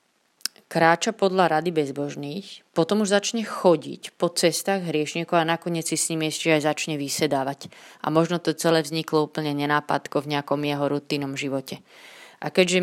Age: 20-39